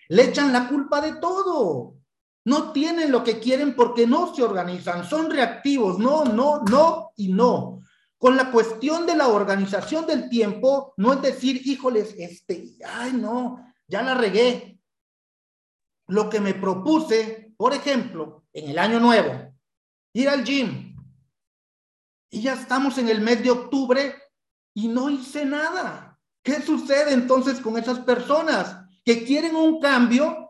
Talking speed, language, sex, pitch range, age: 150 wpm, Spanish, male, 200-275 Hz, 50-69